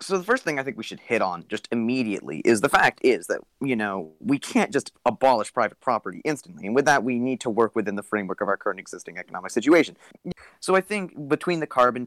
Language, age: English, 30-49